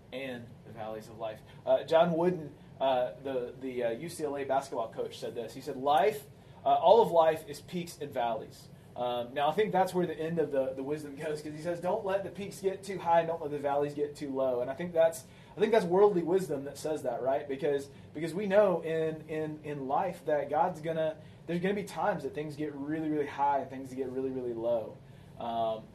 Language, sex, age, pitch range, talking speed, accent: English, male, 30-49, 135-170 Hz, 230 wpm, American